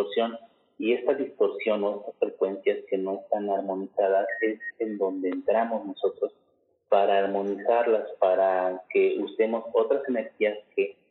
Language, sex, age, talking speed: Spanish, male, 30-49, 120 wpm